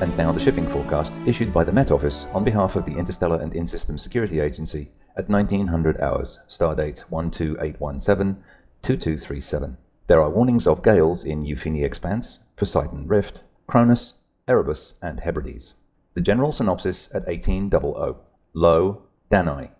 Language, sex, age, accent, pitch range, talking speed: English, male, 40-59, British, 80-100 Hz, 135 wpm